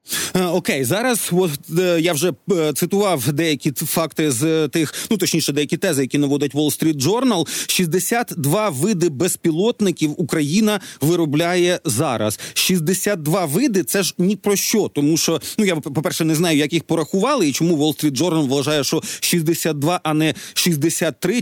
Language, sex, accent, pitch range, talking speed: Ukrainian, male, native, 160-195 Hz, 150 wpm